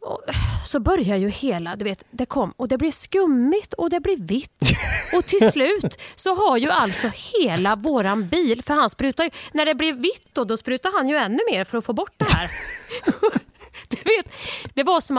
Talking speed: 210 wpm